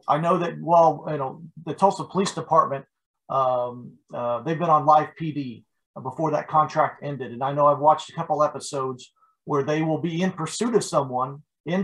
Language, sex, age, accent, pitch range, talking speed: English, male, 40-59, American, 140-170 Hz, 195 wpm